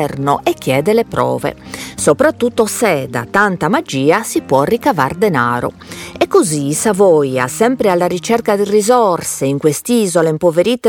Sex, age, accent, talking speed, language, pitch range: female, 40-59, native, 130 wpm, Italian, 150-245 Hz